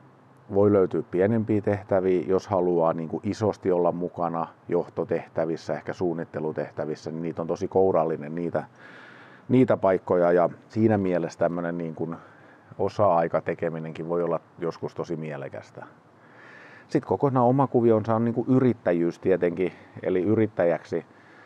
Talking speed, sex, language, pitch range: 120 wpm, male, Finnish, 85-100 Hz